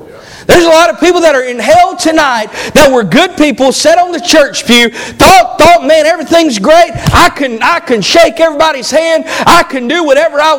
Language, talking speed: English, 205 wpm